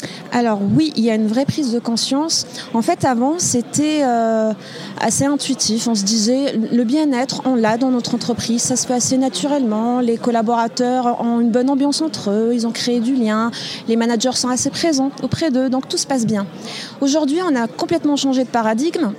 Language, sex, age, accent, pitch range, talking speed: French, female, 30-49, French, 220-275 Hz, 195 wpm